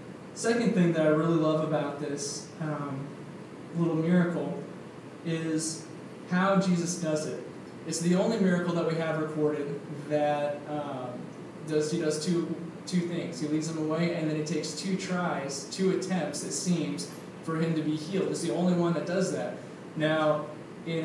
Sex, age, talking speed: male, 20-39, 170 wpm